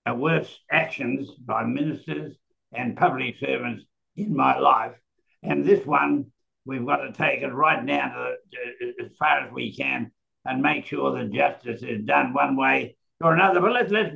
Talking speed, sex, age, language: 180 wpm, male, 60-79, English